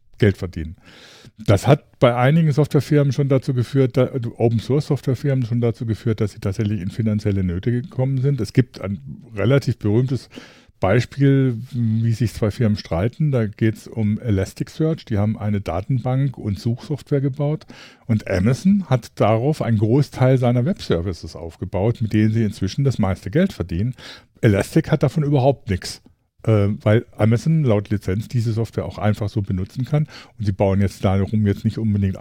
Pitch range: 105-130 Hz